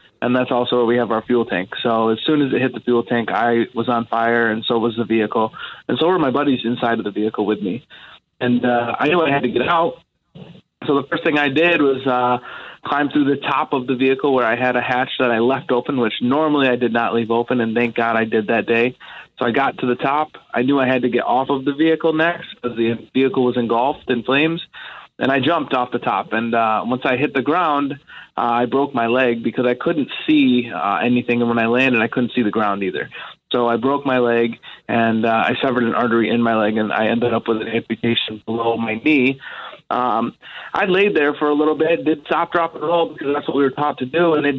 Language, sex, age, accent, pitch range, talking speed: English, male, 20-39, American, 115-140 Hz, 255 wpm